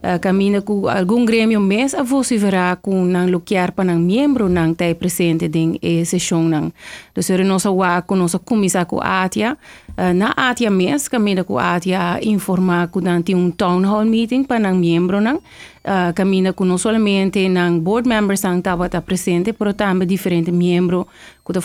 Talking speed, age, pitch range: 175 wpm, 30-49, 180-205 Hz